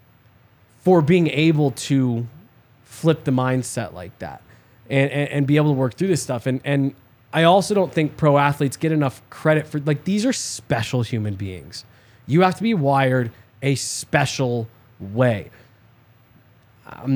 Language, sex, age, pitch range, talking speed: English, male, 20-39, 120-150 Hz, 160 wpm